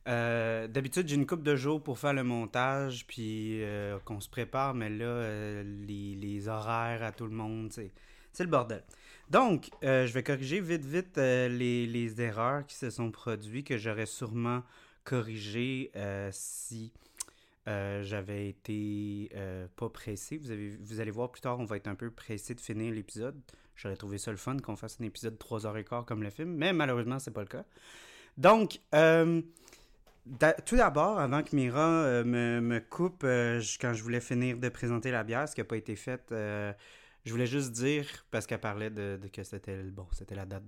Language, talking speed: French, 200 wpm